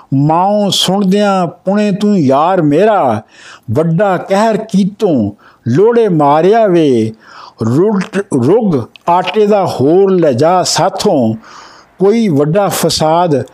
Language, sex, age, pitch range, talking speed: Punjabi, male, 60-79, 160-215 Hz, 100 wpm